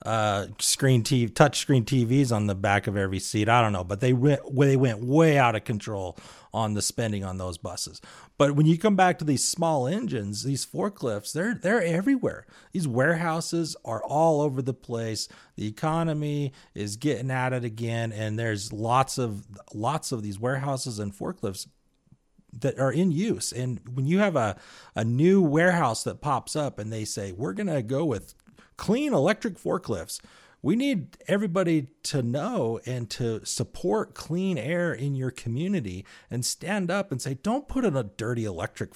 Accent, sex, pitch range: American, male, 115-165 Hz